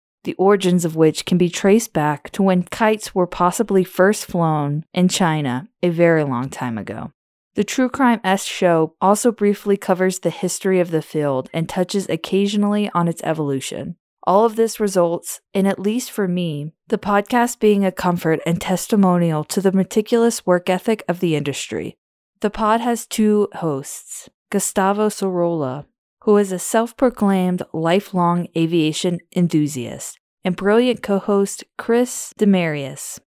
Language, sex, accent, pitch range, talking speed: English, female, American, 170-210 Hz, 150 wpm